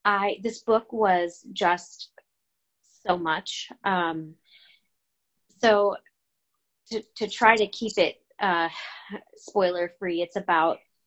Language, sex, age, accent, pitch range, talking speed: English, female, 30-49, American, 160-195 Hz, 110 wpm